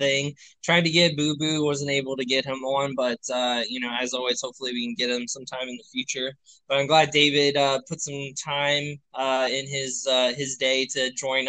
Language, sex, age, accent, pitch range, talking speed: English, male, 20-39, American, 130-150 Hz, 215 wpm